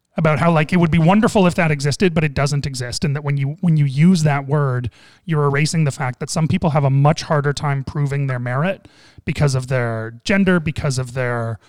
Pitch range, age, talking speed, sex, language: 130-165 Hz, 30-49, 230 wpm, male, English